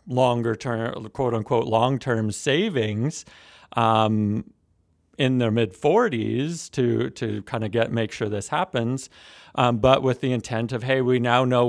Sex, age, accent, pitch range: male, 40-59, American, 110-130 Hz